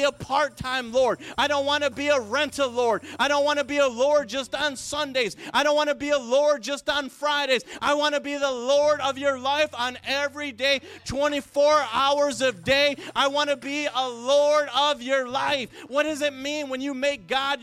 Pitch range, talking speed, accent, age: 255-290 Hz, 220 wpm, American, 30-49